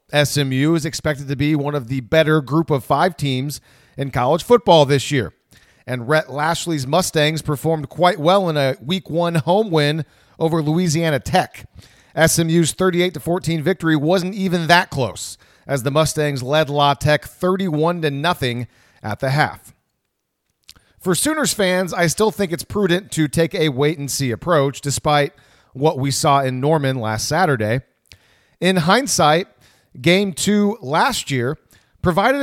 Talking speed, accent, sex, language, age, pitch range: 150 wpm, American, male, English, 40-59, 140-180 Hz